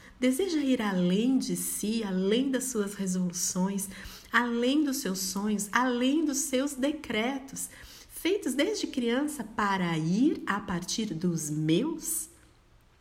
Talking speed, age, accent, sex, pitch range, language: 120 wpm, 40-59, Brazilian, female, 180-245 Hz, Portuguese